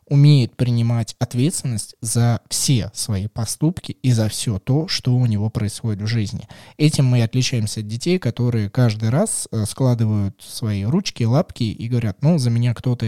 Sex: male